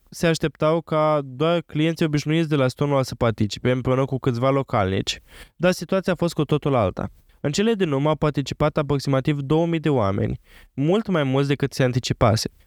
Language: Romanian